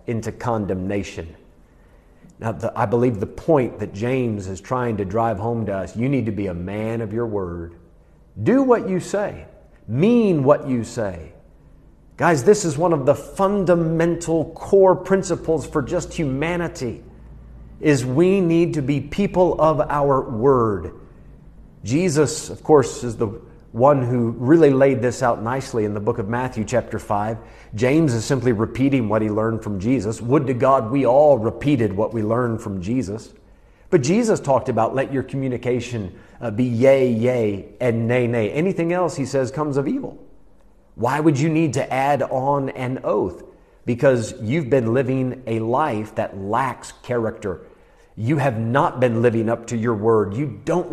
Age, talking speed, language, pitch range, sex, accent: 40-59, 165 wpm, English, 115-150 Hz, male, American